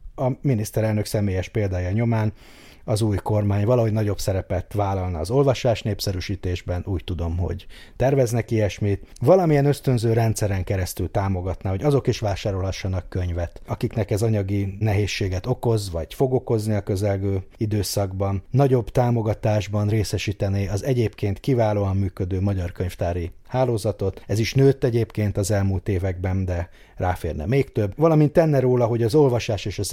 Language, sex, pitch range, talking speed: Hungarian, male, 95-115 Hz, 140 wpm